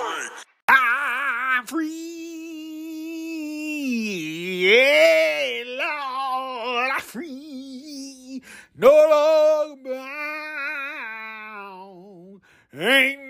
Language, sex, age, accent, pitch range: English, male, 40-59, American, 235-305 Hz